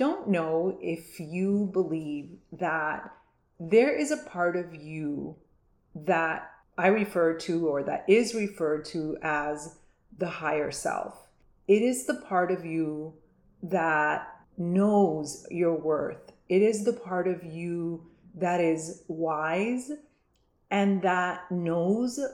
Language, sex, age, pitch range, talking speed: English, female, 30-49, 165-215 Hz, 125 wpm